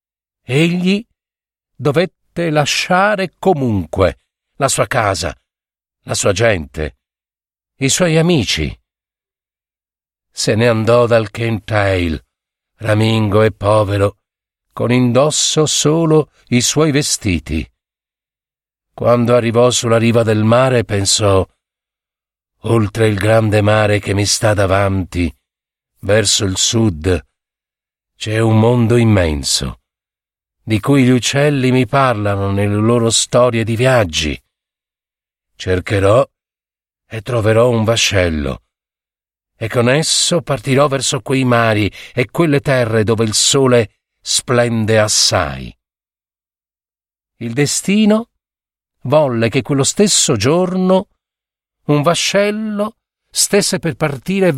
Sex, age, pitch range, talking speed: male, 60-79, 100-145 Hz, 100 wpm